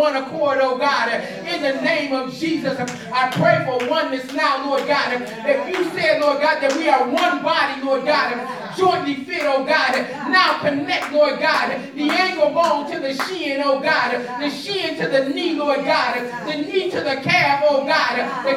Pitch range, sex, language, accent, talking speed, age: 255-305 Hz, male, English, American, 190 wpm, 30-49